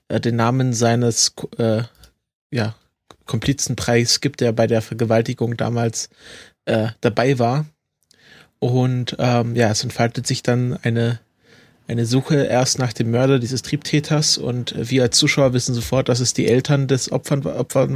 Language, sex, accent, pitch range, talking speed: German, male, German, 115-130 Hz, 145 wpm